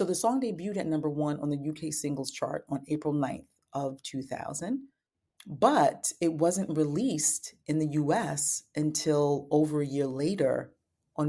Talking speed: 160 wpm